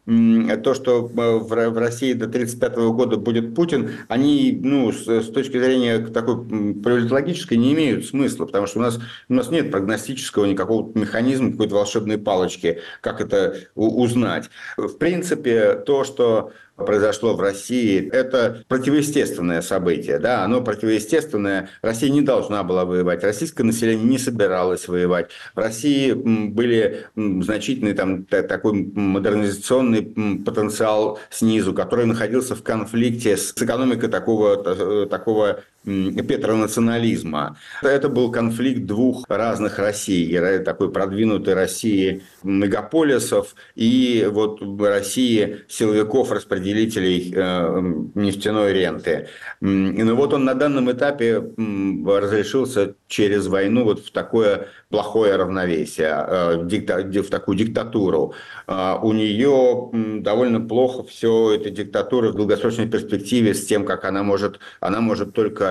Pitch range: 100-125 Hz